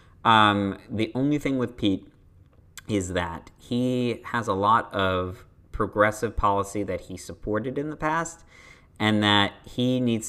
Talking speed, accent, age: 145 wpm, American, 40-59